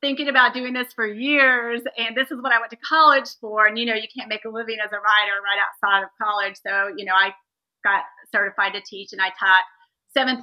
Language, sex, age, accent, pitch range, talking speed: English, female, 30-49, American, 215-270 Hz, 240 wpm